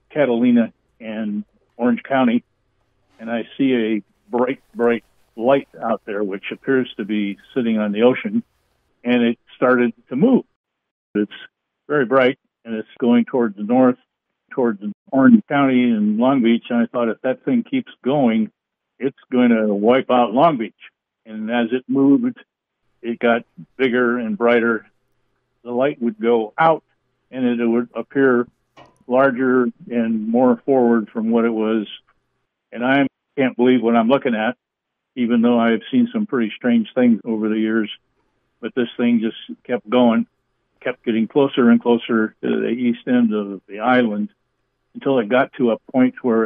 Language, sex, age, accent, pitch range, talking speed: English, male, 60-79, American, 110-130 Hz, 165 wpm